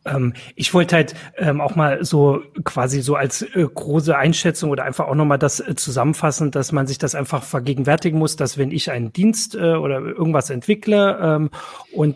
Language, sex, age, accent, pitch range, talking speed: German, male, 40-59, German, 135-165 Hz, 190 wpm